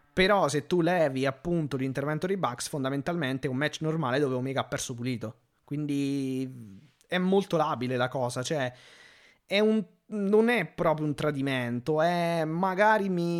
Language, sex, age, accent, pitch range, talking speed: Italian, male, 20-39, native, 130-170 Hz, 155 wpm